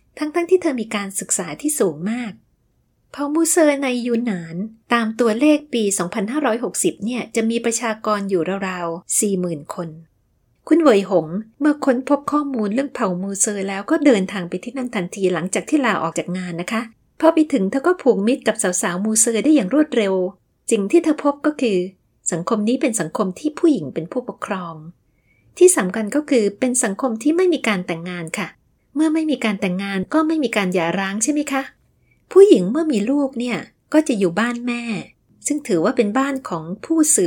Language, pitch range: Thai, 195-290 Hz